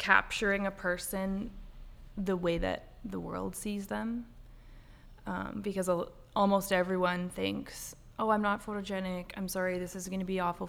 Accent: American